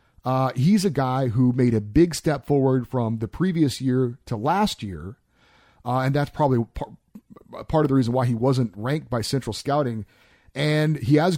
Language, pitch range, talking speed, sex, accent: English, 120-160 Hz, 185 wpm, male, American